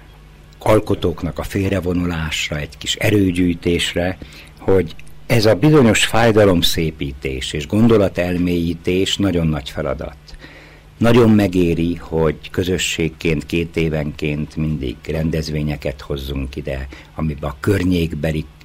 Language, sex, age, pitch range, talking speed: Hungarian, male, 60-79, 75-95 Hz, 95 wpm